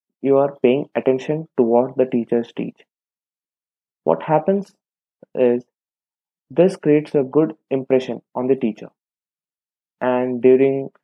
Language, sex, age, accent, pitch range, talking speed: English, male, 20-39, Indian, 120-150 Hz, 115 wpm